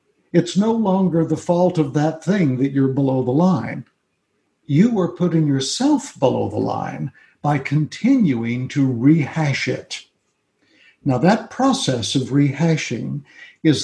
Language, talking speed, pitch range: English, 135 wpm, 135-175 Hz